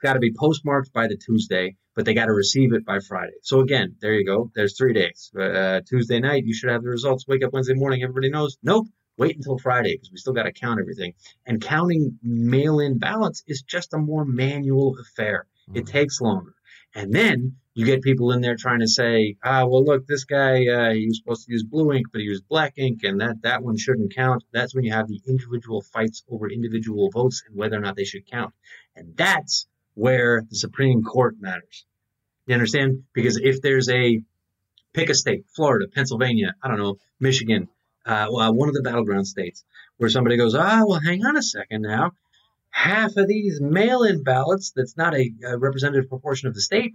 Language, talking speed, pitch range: English, 210 wpm, 115-140 Hz